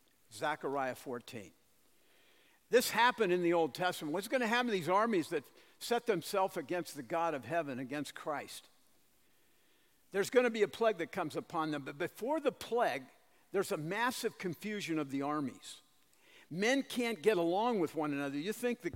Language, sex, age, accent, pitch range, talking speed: English, male, 50-69, American, 165-220 Hz, 175 wpm